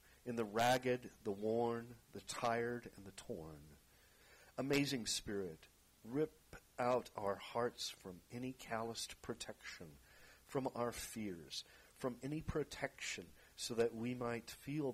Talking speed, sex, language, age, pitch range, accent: 125 wpm, male, English, 50-69, 100-125 Hz, American